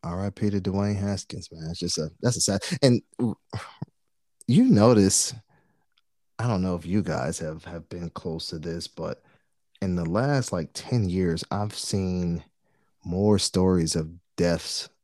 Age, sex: 30-49, male